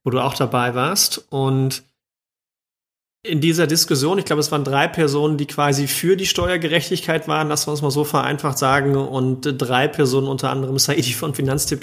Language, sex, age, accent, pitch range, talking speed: German, male, 40-59, German, 135-155 Hz, 185 wpm